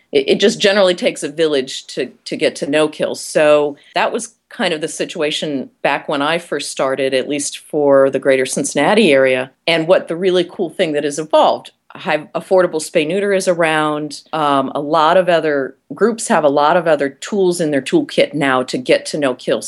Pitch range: 140-180 Hz